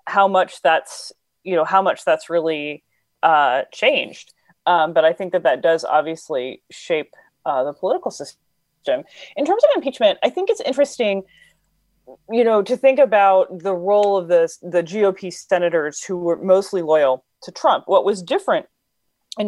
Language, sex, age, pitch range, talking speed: English, female, 30-49, 170-235 Hz, 165 wpm